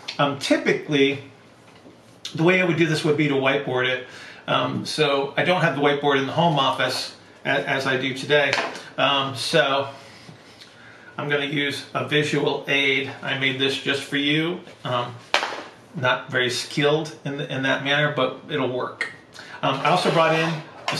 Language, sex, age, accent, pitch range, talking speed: English, male, 40-59, American, 130-150 Hz, 175 wpm